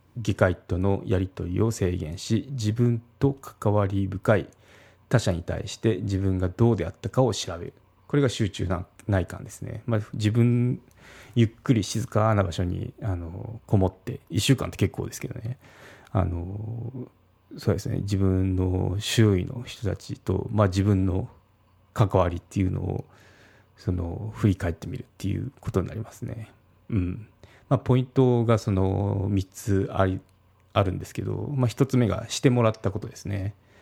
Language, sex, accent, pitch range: Japanese, male, native, 95-120 Hz